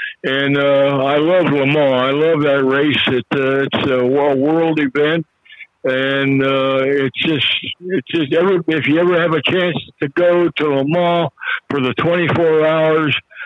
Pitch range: 140-180 Hz